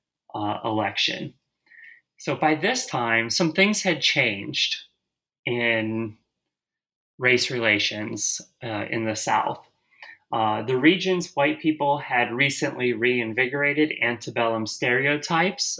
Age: 30-49